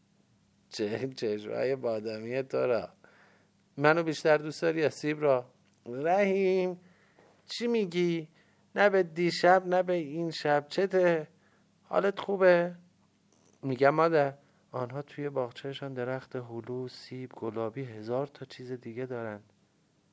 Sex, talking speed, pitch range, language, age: male, 115 wpm, 115-155 Hz, Persian, 50-69